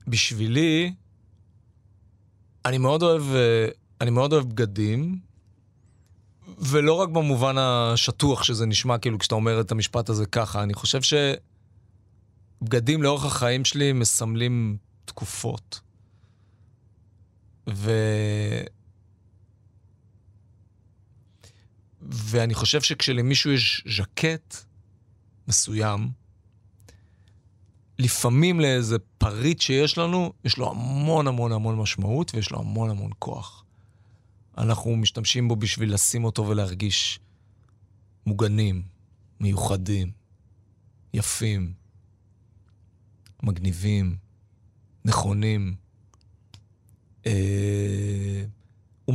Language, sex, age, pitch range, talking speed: Hebrew, male, 40-59, 100-120 Hz, 80 wpm